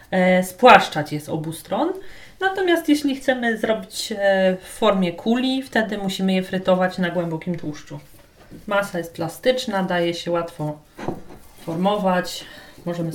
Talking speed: 120 wpm